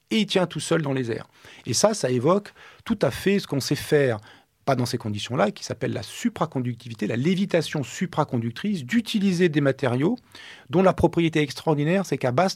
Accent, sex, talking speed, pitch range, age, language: French, male, 190 wpm, 120-175 Hz, 40-59, French